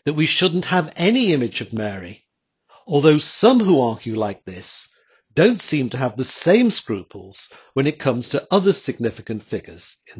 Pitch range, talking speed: 115-160 Hz, 170 wpm